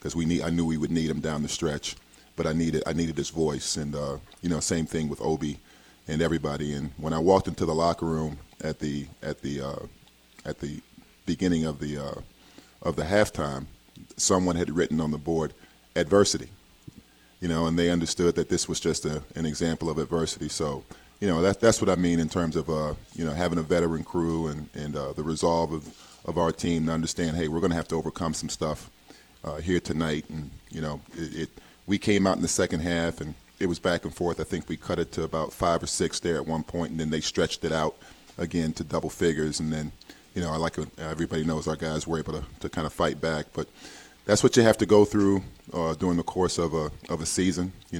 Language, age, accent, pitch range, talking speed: English, 40-59, American, 75-85 Hz, 240 wpm